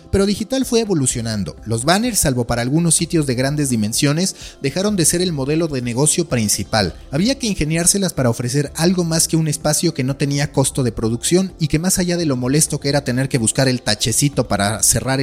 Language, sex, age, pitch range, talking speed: Spanish, male, 40-59, 125-175 Hz, 210 wpm